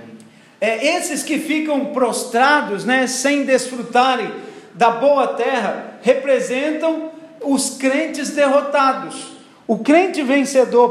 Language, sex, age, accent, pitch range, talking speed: Portuguese, male, 50-69, Brazilian, 250-300 Hz, 100 wpm